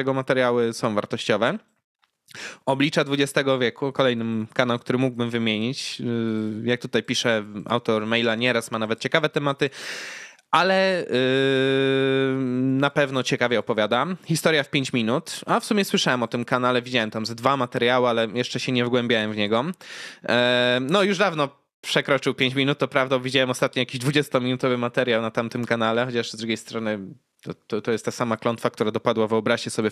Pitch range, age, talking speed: 115-135 Hz, 20-39, 160 wpm